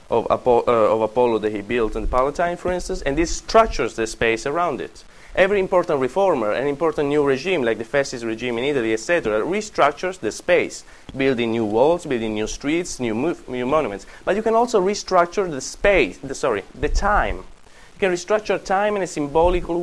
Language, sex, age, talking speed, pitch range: English, male, 30-49, 190 wpm, 125-190 Hz